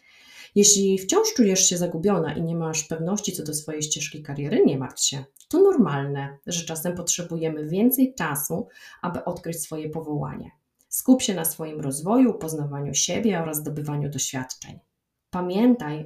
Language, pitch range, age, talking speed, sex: Polish, 150-190 Hz, 30-49, 145 wpm, female